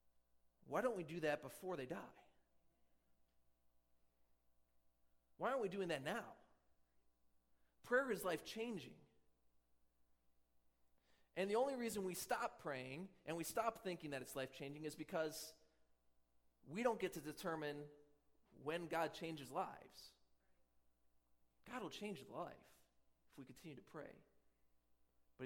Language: English